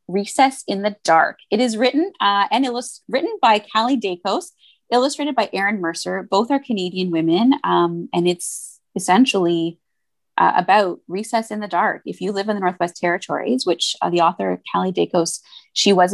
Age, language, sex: 20-39, English, female